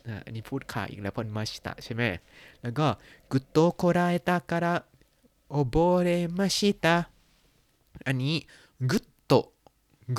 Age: 20-39